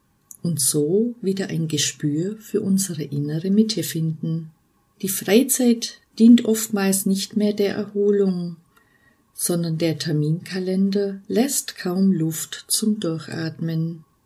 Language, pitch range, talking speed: German, 160-215 Hz, 110 wpm